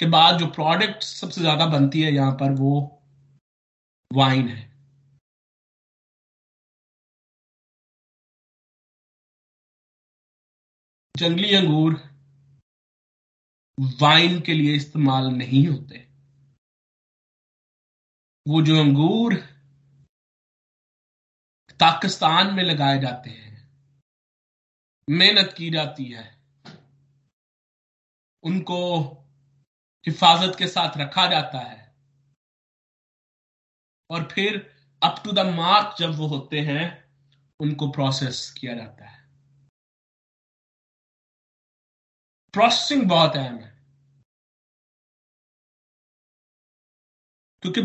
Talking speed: 75 wpm